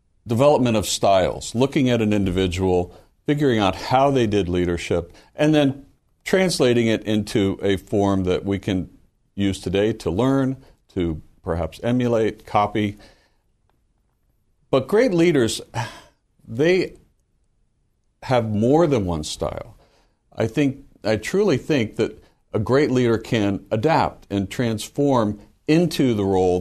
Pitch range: 95-125 Hz